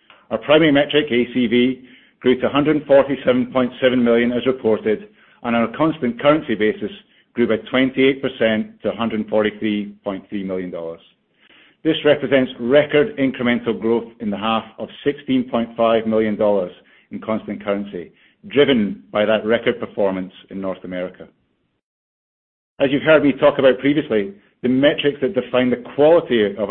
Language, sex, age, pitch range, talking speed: English, male, 50-69, 110-135 Hz, 130 wpm